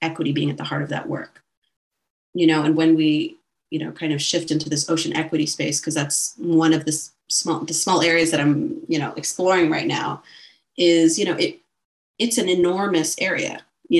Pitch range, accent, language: 155-170 Hz, American, English